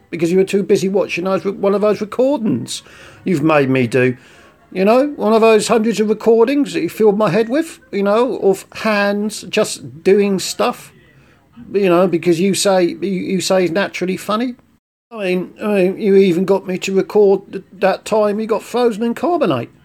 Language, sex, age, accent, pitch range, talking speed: English, male, 50-69, British, 160-215 Hz, 190 wpm